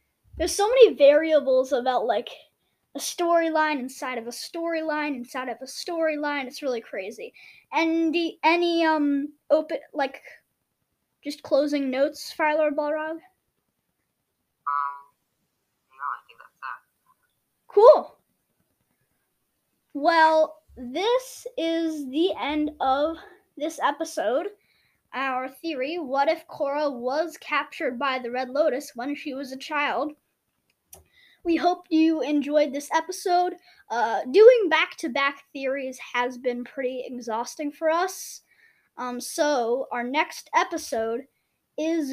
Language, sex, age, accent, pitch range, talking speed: English, female, 20-39, American, 260-330 Hz, 120 wpm